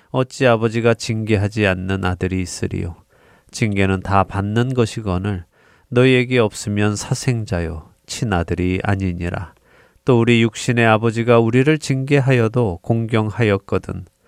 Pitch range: 95-120 Hz